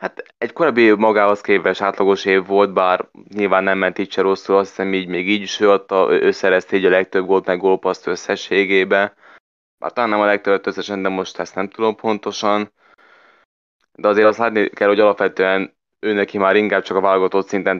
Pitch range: 95-105 Hz